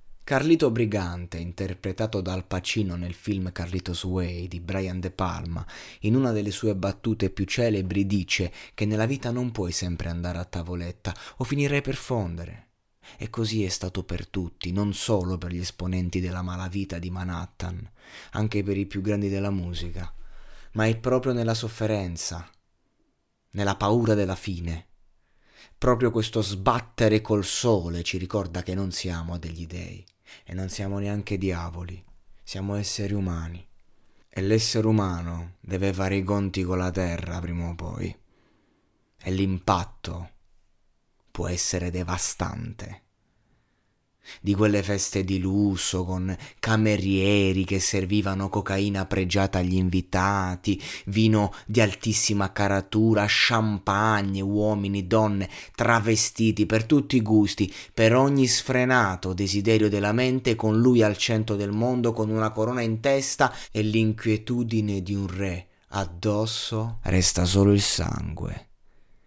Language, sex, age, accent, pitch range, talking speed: Italian, male, 30-49, native, 90-110 Hz, 135 wpm